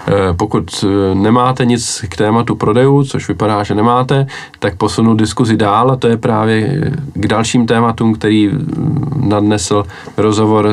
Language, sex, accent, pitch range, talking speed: Czech, male, native, 100-115 Hz, 135 wpm